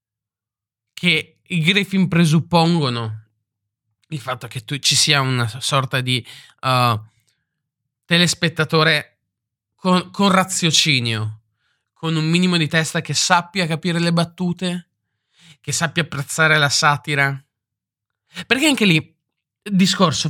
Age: 20-39